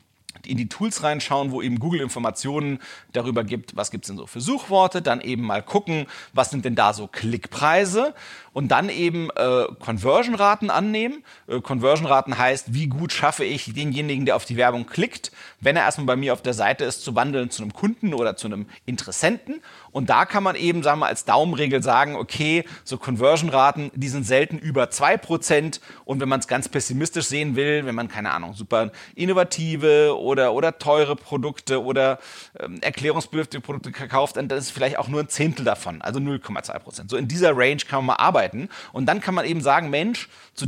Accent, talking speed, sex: German, 195 wpm, male